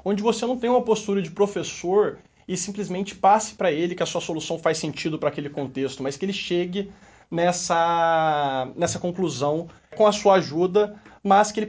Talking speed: 185 wpm